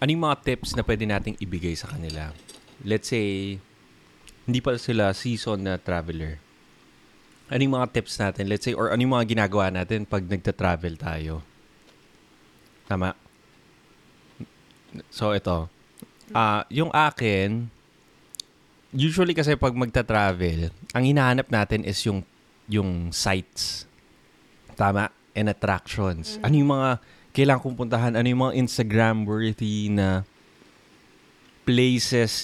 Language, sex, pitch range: Filipino, male, 95-125 Hz